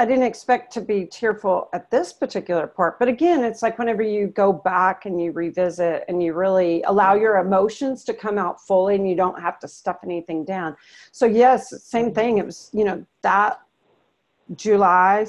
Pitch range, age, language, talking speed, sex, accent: 175-220 Hz, 40-59, English, 190 wpm, female, American